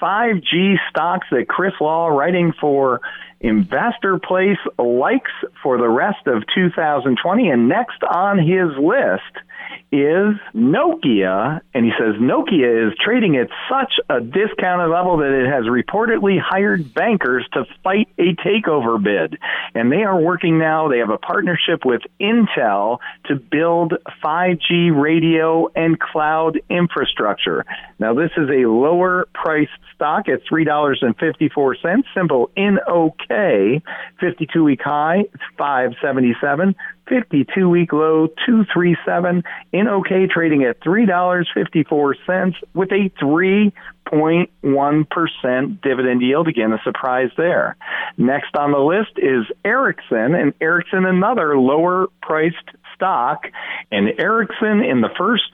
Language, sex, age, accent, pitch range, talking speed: English, male, 40-59, American, 145-190 Hz, 125 wpm